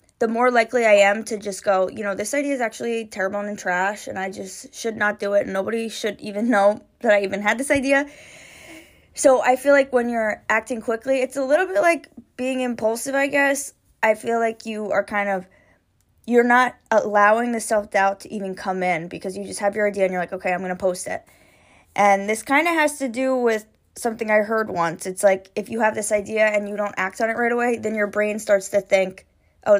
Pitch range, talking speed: 200-255 Hz, 235 wpm